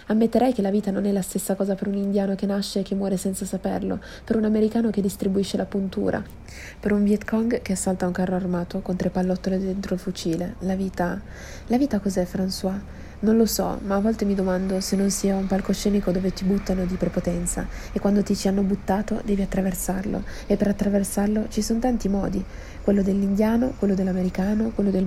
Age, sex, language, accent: 30-49, female, Italian, native